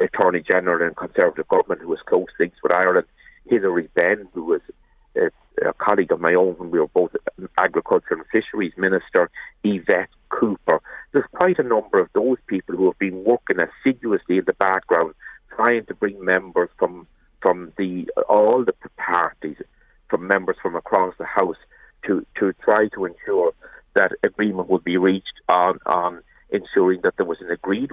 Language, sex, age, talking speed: English, male, 60-79, 170 wpm